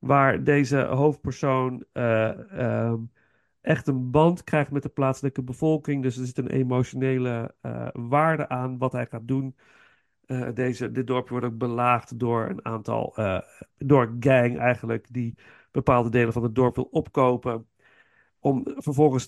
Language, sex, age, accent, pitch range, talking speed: Dutch, male, 40-59, Dutch, 125-150 Hz, 150 wpm